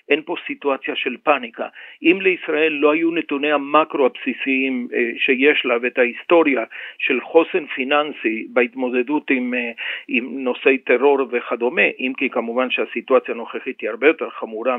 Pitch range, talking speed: 130-165 Hz, 140 wpm